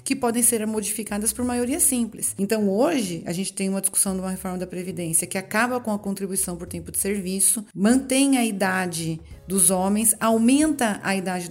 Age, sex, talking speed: 40-59, female, 190 wpm